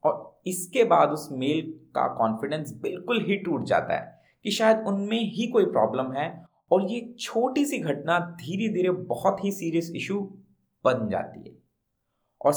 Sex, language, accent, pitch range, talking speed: male, Hindi, native, 135-200 Hz, 160 wpm